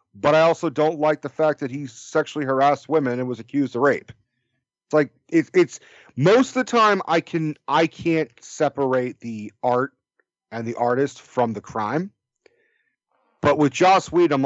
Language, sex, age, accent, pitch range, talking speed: English, male, 40-59, American, 120-160 Hz, 180 wpm